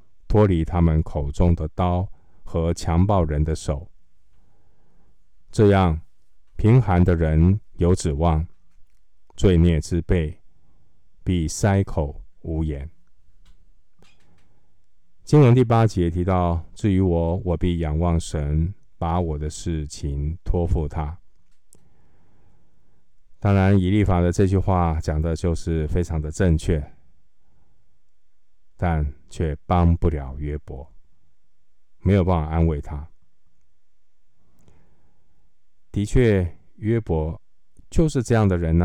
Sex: male